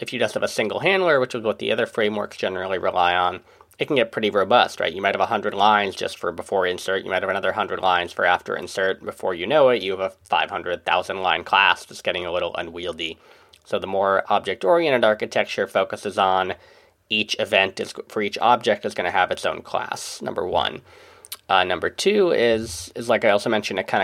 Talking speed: 215 wpm